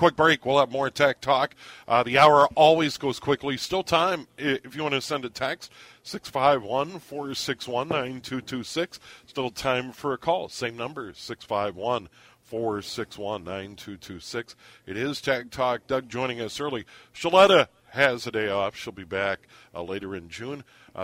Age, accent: 50-69, American